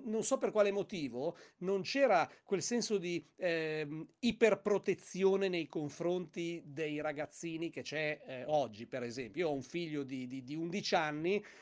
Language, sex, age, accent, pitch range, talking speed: Italian, male, 40-59, native, 150-200 Hz, 150 wpm